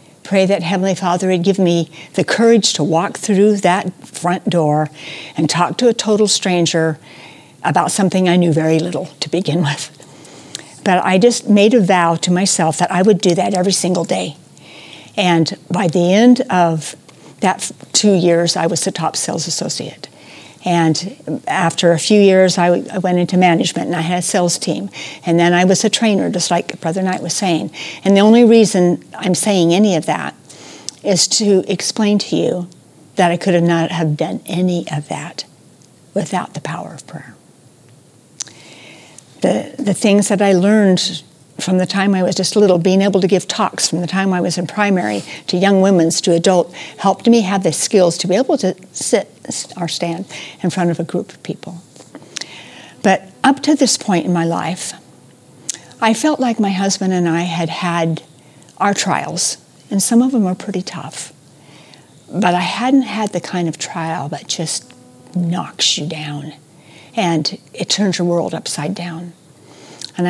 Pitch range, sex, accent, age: 165-195 Hz, female, American, 60-79